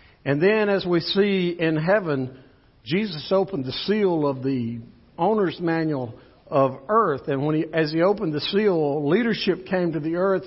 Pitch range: 160-200 Hz